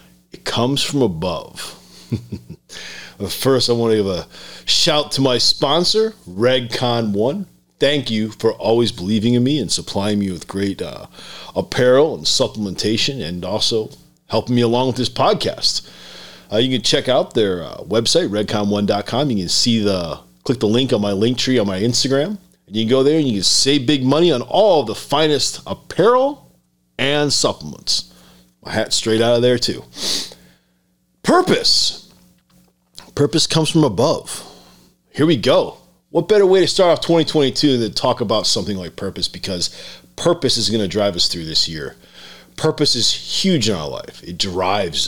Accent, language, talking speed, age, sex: American, English, 170 wpm, 40-59, male